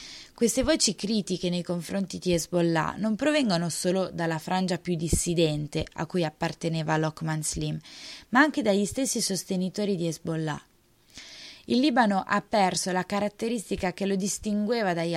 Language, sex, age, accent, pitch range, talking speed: Italian, female, 20-39, native, 165-210 Hz, 140 wpm